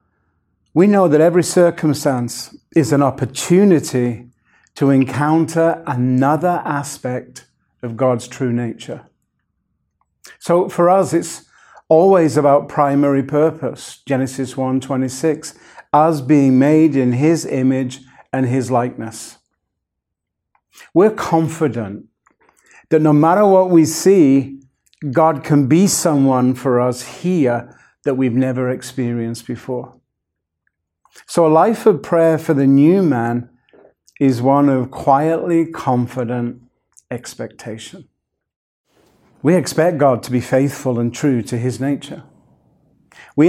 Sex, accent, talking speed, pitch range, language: male, British, 115 wpm, 125-160 Hz, English